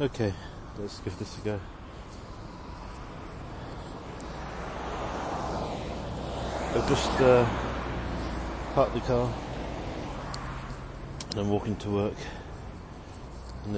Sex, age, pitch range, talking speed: male, 40-59, 85-110 Hz, 80 wpm